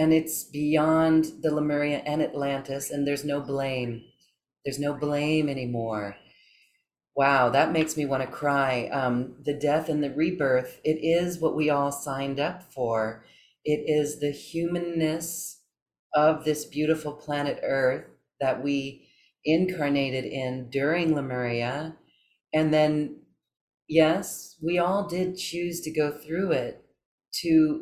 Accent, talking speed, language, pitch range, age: American, 135 wpm, English, 130-160 Hz, 40-59